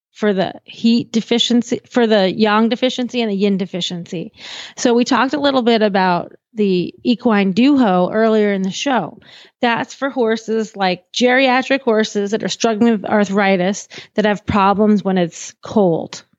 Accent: American